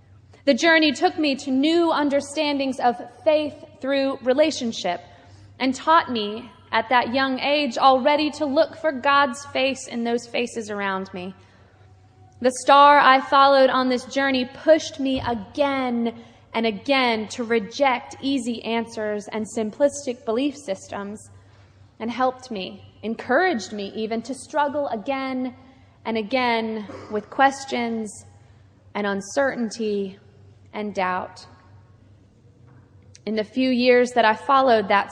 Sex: female